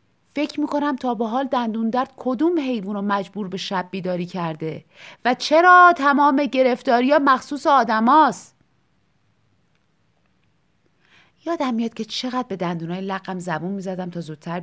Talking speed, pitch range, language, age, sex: 135 wpm, 200-275 Hz, Persian, 30-49, female